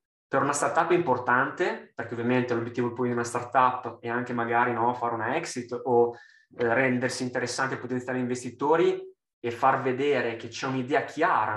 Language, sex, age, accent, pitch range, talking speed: Italian, male, 20-39, native, 120-150 Hz, 165 wpm